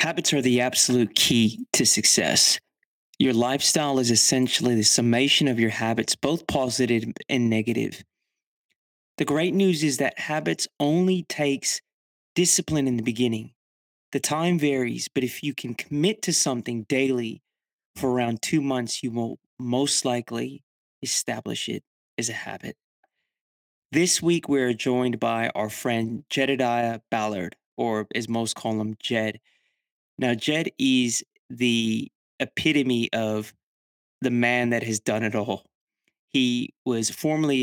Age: 30-49